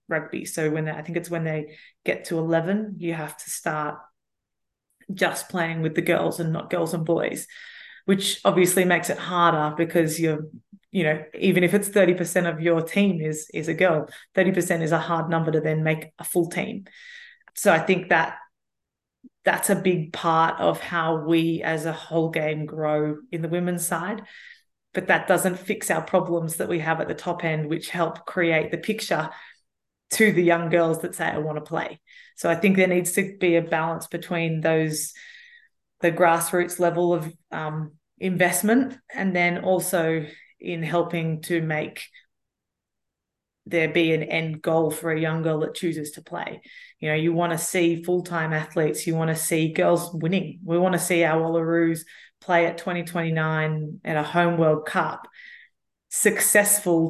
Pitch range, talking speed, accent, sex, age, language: 160-180 Hz, 180 wpm, Australian, female, 30-49, English